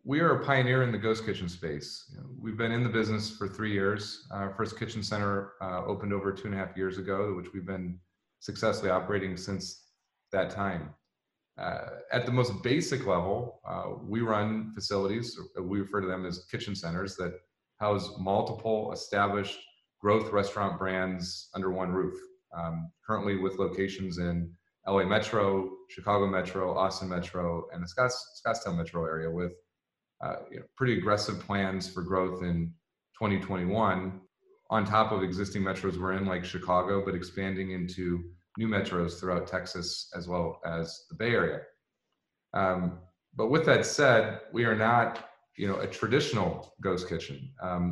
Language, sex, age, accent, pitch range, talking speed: English, male, 30-49, American, 90-105 Hz, 165 wpm